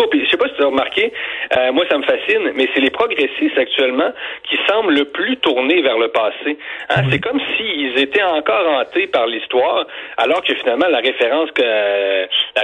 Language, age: French, 40-59